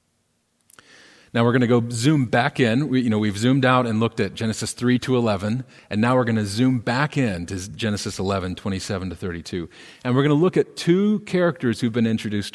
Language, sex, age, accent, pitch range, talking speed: English, male, 40-59, American, 100-135 Hz, 205 wpm